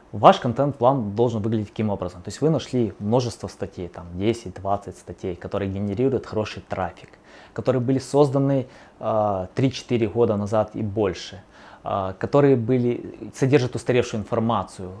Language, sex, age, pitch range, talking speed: Russian, male, 20-39, 100-130 Hz, 125 wpm